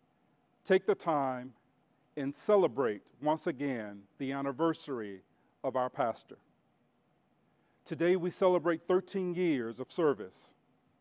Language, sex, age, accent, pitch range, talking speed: English, male, 40-59, American, 135-175 Hz, 105 wpm